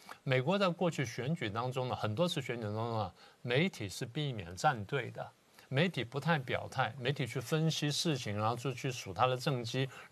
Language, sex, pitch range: Chinese, male, 110-145 Hz